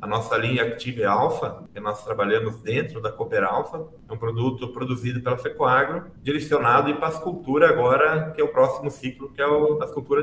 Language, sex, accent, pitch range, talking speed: Portuguese, male, Brazilian, 125-195 Hz, 190 wpm